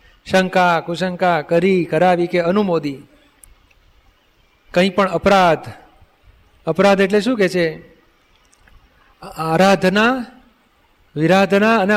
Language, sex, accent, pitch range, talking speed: Gujarati, male, native, 170-210 Hz, 85 wpm